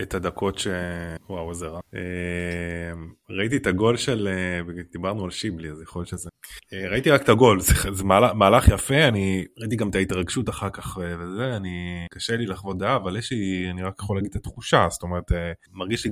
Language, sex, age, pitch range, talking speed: Hebrew, male, 20-39, 85-105 Hz, 185 wpm